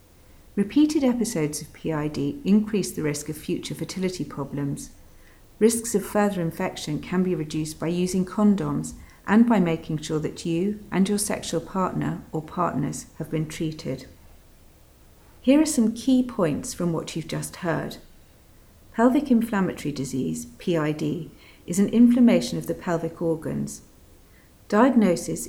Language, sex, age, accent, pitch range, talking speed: English, female, 40-59, British, 150-205 Hz, 135 wpm